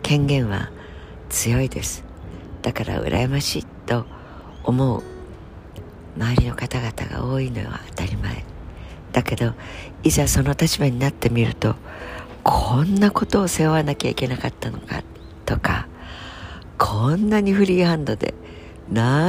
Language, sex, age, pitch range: Japanese, female, 60-79, 90-135 Hz